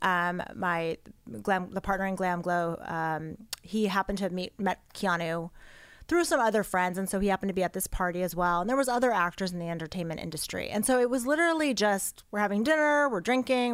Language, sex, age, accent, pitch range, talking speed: English, female, 30-49, American, 180-225 Hz, 225 wpm